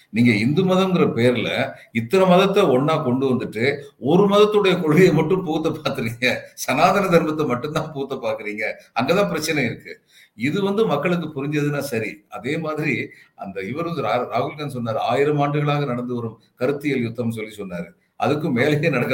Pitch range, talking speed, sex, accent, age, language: 130-175 Hz, 140 wpm, male, native, 50-69, Tamil